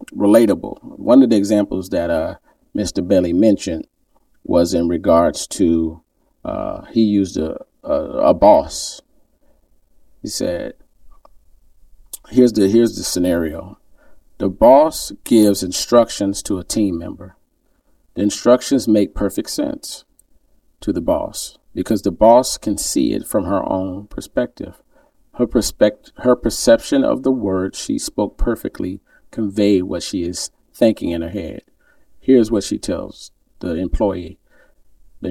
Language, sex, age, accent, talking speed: English, male, 40-59, American, 135 wpm